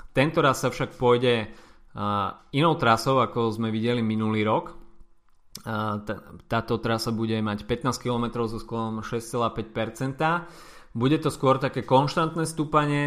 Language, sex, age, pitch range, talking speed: Slovak, male, 20-39, 105-120 Hz, 140 wpm